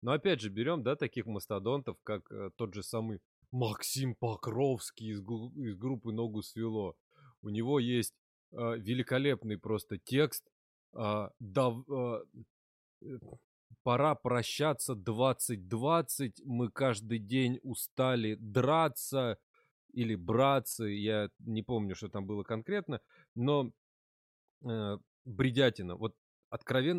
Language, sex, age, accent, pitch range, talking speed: Russian, male, 20-39, native, 115-155 Hz, 95 wpm